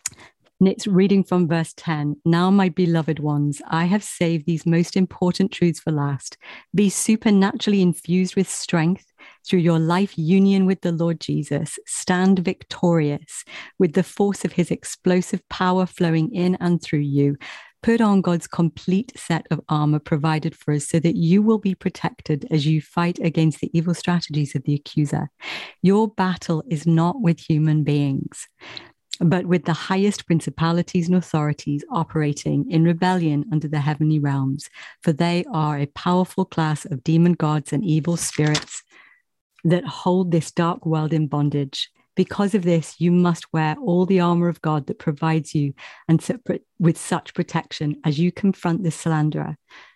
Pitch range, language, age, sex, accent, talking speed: 155-185 Hz, English, 40-59, female, British, 165 wpm